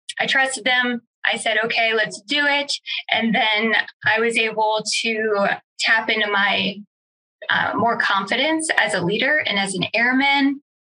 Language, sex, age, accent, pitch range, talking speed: English, female, 10-29, American, 215-250 Hz, 155 wpm